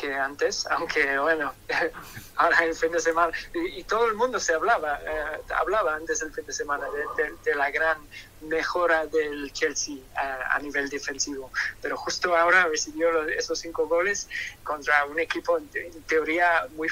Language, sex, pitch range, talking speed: Spanish, male, 150-195 Hz, 175 wpm